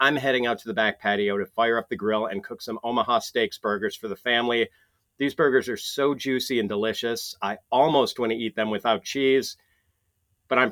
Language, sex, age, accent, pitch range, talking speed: English, male, 40-59, American, 110-135 Hz, 205 wpm